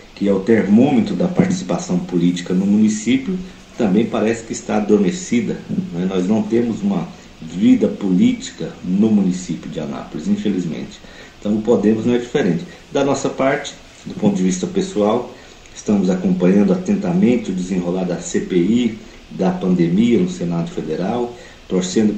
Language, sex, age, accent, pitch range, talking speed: Portuguese, male, 50-69, Brazilian, 90-130 Hz, 145 wpm